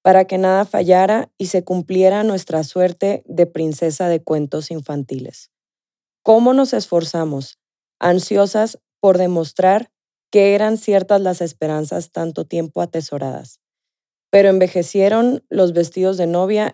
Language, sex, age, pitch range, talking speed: Spanish, female, 20-39, 165-195 Hz, 120 wpm